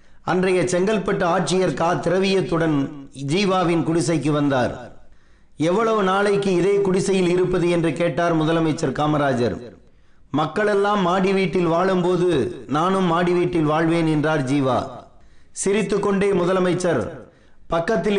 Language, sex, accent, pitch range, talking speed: Tamil, male, native, 160-190 Hz, 90 wpm